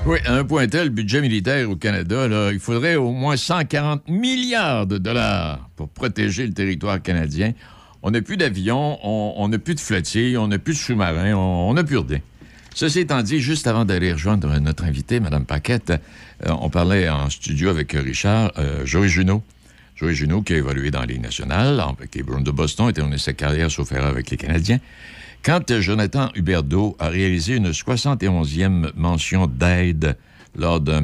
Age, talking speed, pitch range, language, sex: 60-79, 190 wpm, 80-115 Hz, French, male